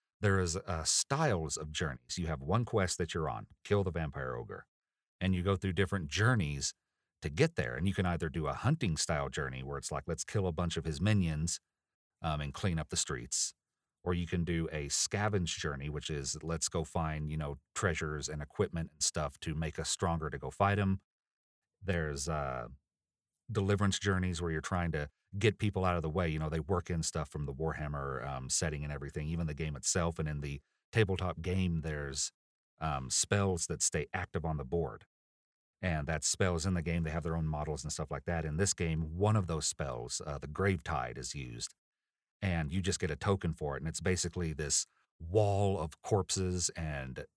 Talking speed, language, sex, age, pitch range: 210 wpm, English, male, 40-59, 75-95 Hz